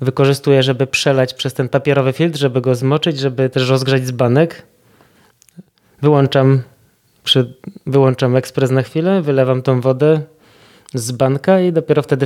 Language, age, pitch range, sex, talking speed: Polish, 20-39, 130-145 Hz, male, 130 wpm